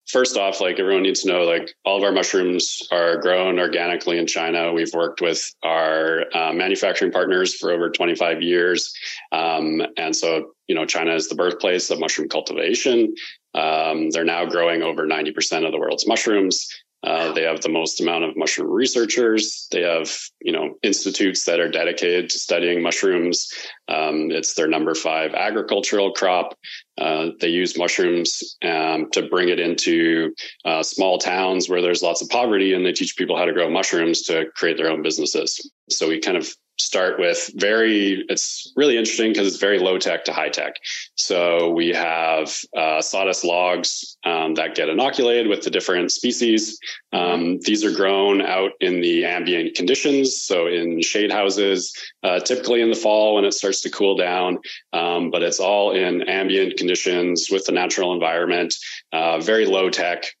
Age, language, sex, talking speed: 30-49, English, male, 180 wpm